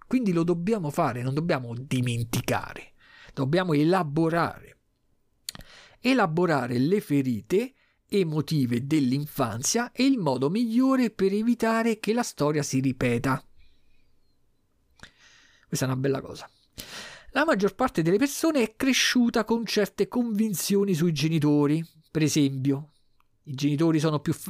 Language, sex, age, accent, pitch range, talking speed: Italian, male, 50-69, native, 140-205 Hz, 120 wpm